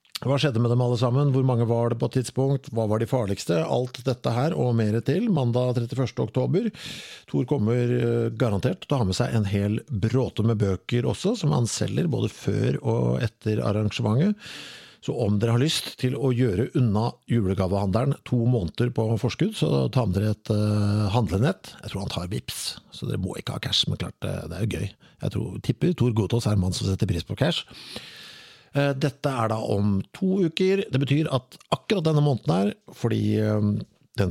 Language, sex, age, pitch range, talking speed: English, male, 50-69, 105-130 Hz, 195 wpm